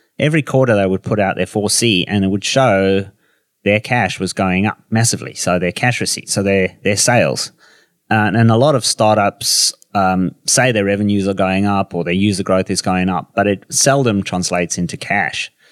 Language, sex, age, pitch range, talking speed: English, male, 30-49, 95-115 Hz, 200 wpm